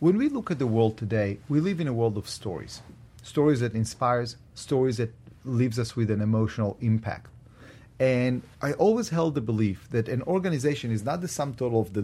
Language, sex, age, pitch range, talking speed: English, male, 40-59, 115-150 Hz, 205 wpm